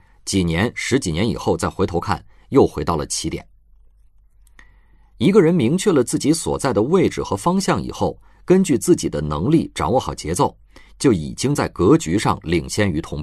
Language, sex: Chinese, male